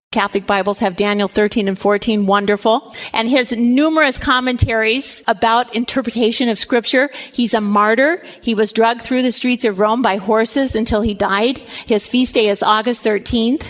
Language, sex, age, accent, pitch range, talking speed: English, female, 40-59, American, 220-270 Hz, 165 wpm